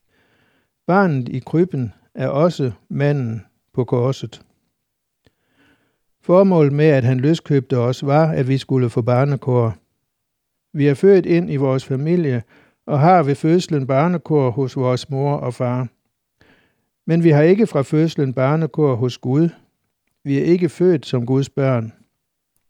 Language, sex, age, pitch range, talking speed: Danish, male, 60-79, 130-160 Hz, 140 wpm